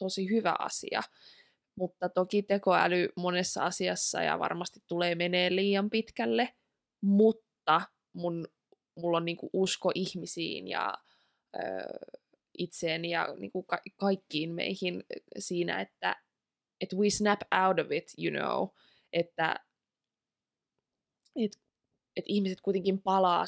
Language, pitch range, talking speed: Finnish, 170-200 Hz, 115 wpm